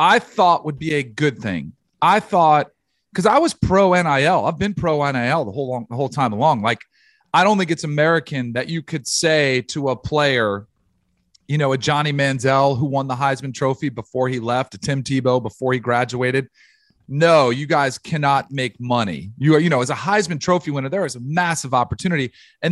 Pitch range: 130-170 Hz